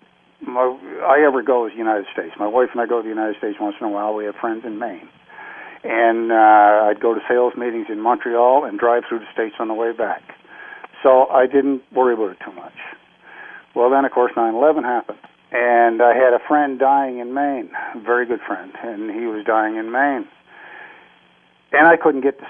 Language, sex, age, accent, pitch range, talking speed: English, male, 50-69, American, 110-135 Hz, 215 wpm